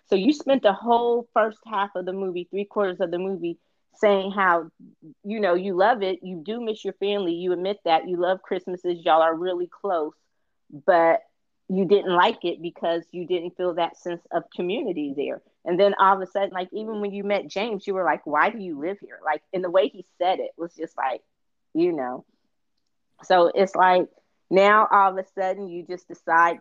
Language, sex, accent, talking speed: English, female, American, 210 wpm